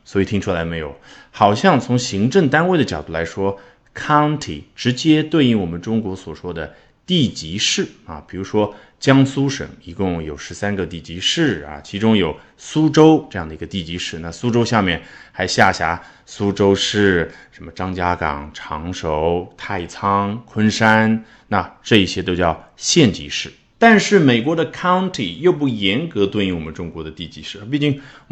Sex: male